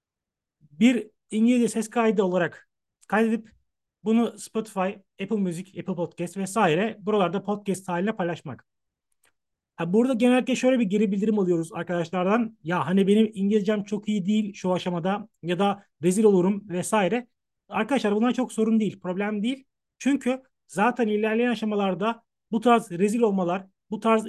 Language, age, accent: Turkish, 40-59, native